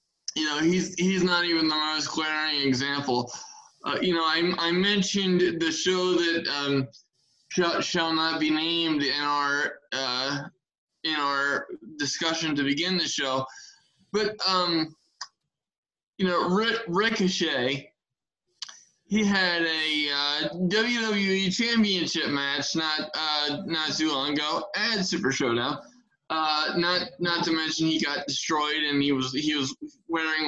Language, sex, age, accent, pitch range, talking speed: English, male, 20-39, American, 145-185 Hz, 140 wpm